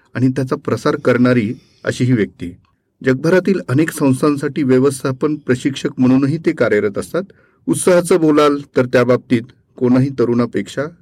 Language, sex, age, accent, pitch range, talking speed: Marathi, male, 40-59, native, 125-150 Hz, 125 wpm